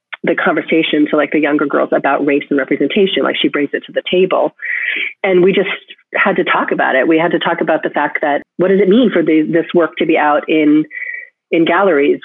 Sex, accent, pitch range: female, American, 150-195 Hz